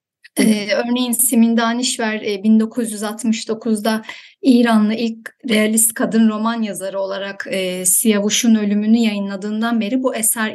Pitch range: 220-265 Hz